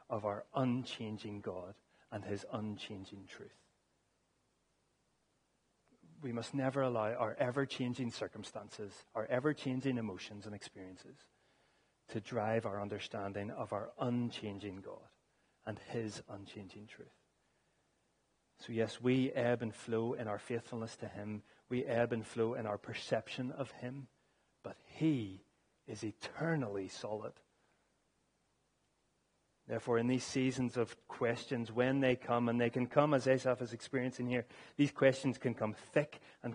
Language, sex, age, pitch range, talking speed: English, male, 30-49, 105-130 Hz, 135 wpm